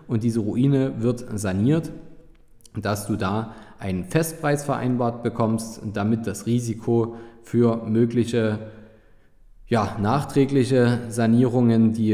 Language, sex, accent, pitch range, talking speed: German, male, German, 105-125 Hz, 95 wpm